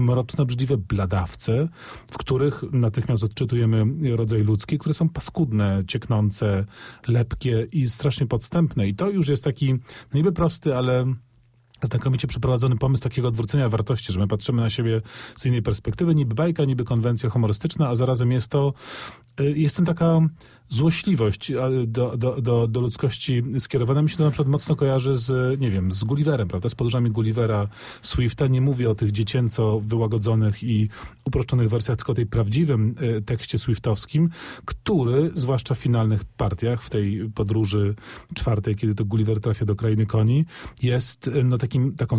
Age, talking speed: 40-59, 155 wpm